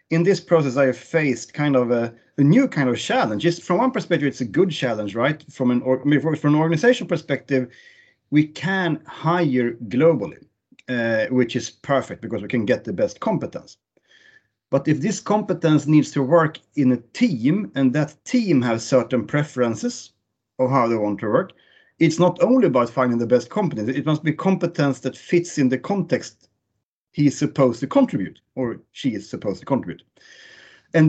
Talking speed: 185 wpm